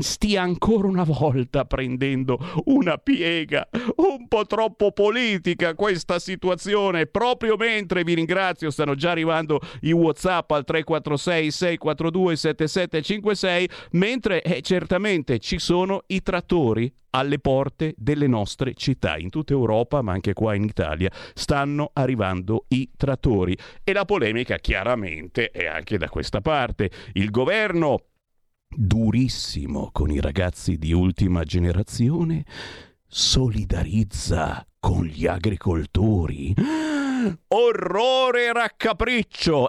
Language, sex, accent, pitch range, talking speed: Italian, male, native, 120-180 Hz, 110 wpm